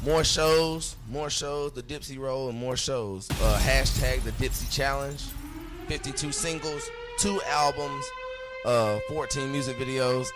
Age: 20-39